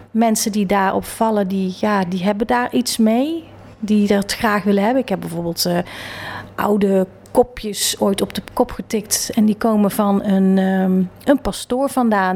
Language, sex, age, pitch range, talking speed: Dutch, female, 40-59, 195-230 Hz, 165 wpm